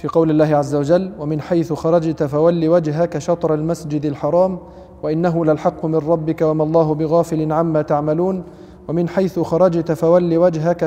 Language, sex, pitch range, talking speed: Arabic, male, 160-185 Hz, 150 wpm